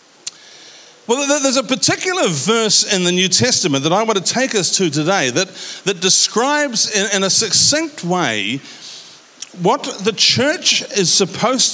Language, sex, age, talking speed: English, male, 50-69, 155 wpm